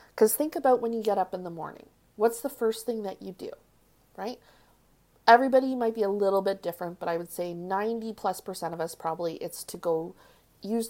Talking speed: 215 wpm